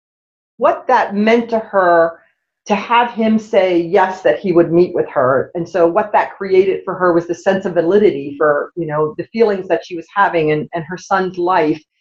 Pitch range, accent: 175-230 Hz, American